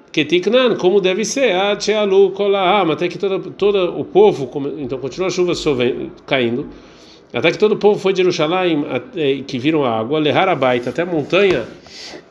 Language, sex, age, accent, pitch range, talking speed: Portuguese, male, 40-59, Brazilian, 145-190 Hz, 160 wpm